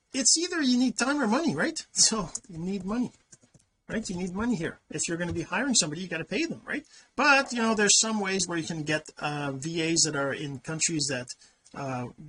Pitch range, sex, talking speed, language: 155-215 Hz, male, 235 wpm, English